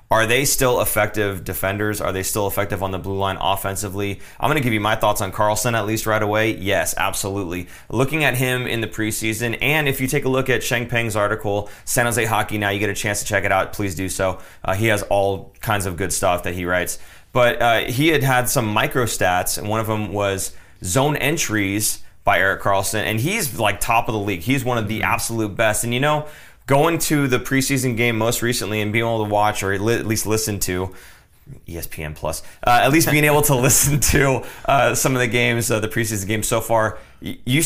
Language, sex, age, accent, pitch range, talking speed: English, male, 30-49, American, 100-125 Hz, 230 wpm